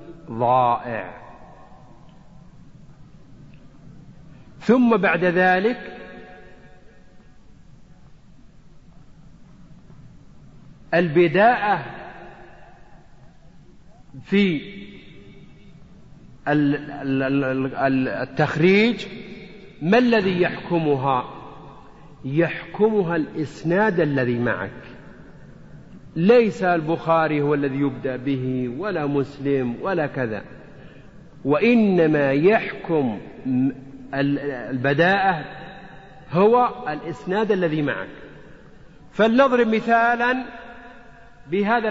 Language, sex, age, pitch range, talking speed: Arabic, male, 50-69, 145-205 Hz, 50 wpm